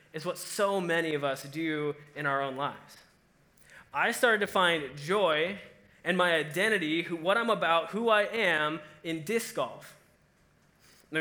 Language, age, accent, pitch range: English, 20-39, American, 155-195 Hz